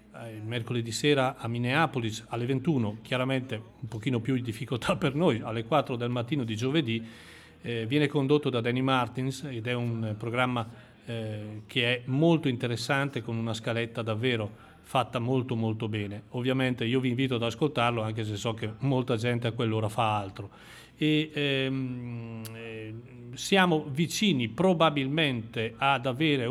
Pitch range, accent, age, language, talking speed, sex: 115-140 Hz, native, 40-59, Italian, 145 wpm, male